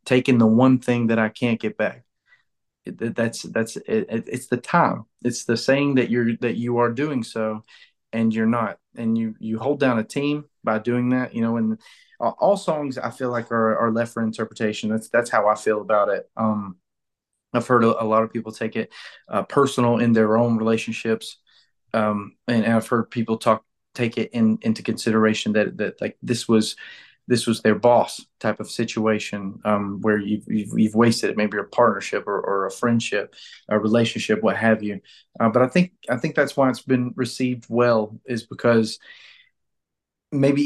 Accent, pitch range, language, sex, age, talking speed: American, 110-125 Hz, English, male, 30-49, 195 wpm